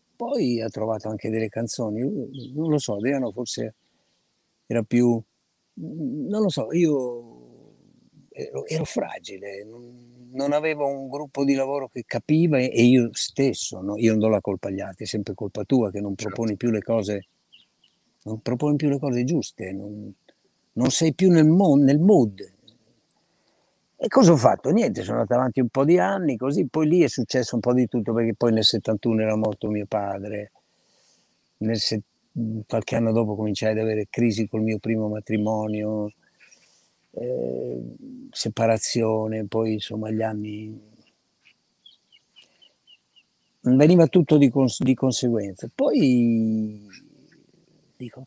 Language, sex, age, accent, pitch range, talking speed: Italian, male, 60-79, native, 110-130 Hz, 150 wpm